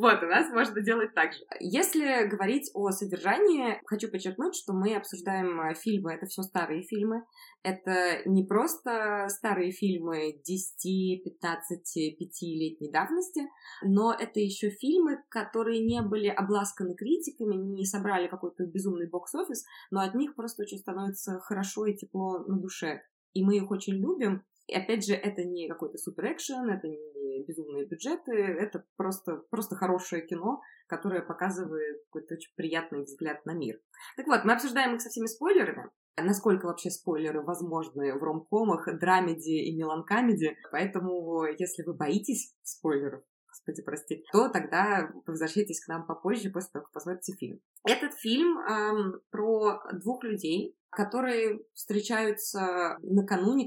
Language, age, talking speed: Russian, 20-39, 145 wpm